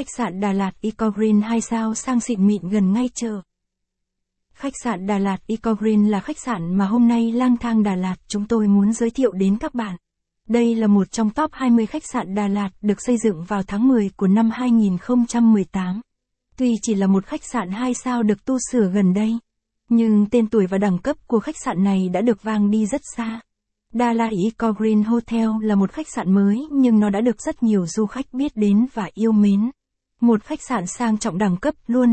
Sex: female